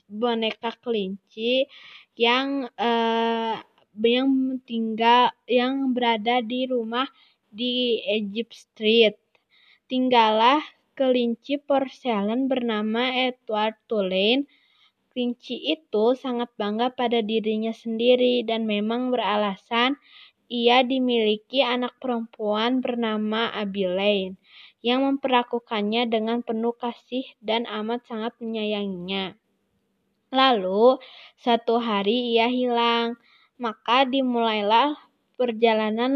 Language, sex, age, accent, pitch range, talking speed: Indonesian, female, 20-39, native, 220-250 Hz, 85 wpm